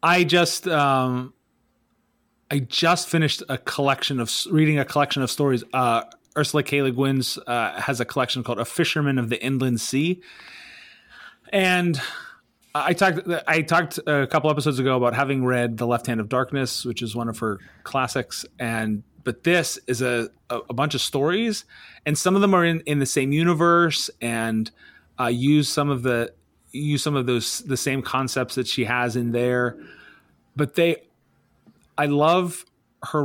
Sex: male